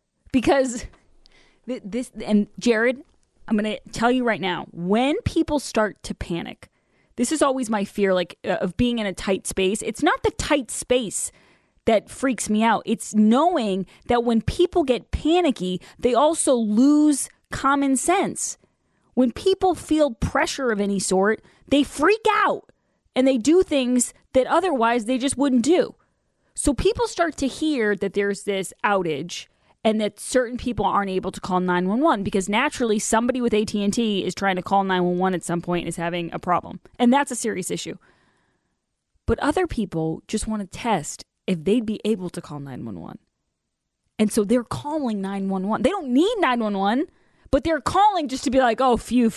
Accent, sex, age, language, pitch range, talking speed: American, female, 20-39, English, 200-275 Hz, 185 wpm